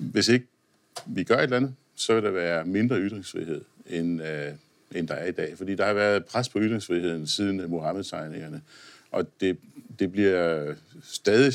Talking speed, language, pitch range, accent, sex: 165 wpm, Danish, 95-125 Hz, native, male